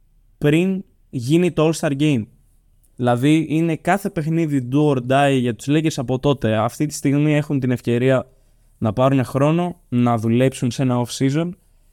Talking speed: 160 wpm